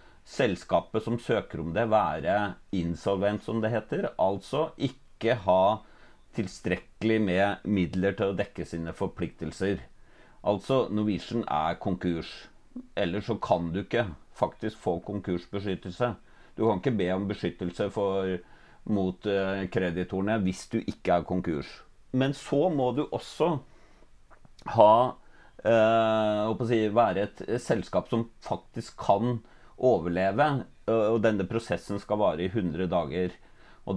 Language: English